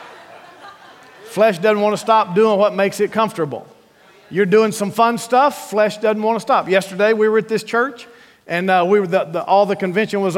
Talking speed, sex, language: 210 wpm, male, English